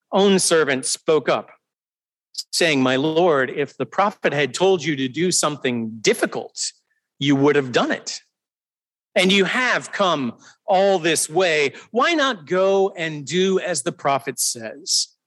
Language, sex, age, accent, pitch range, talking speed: English, male, 40-59, American, 140-190 Hz, 150 wpm